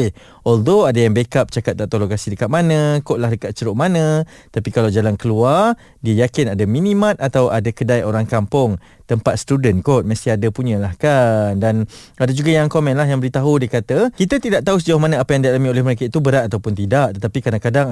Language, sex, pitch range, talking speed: Malay, male, 120-160 Hz, 205 wpm